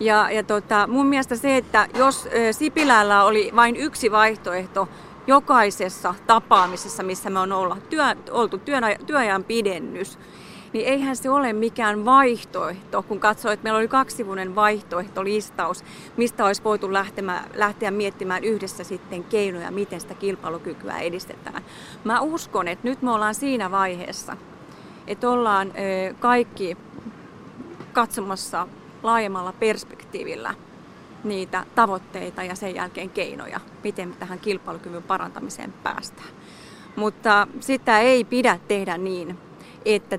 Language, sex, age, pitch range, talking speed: Finnish, female, 30-49, 190-235 Hz, 120 wpm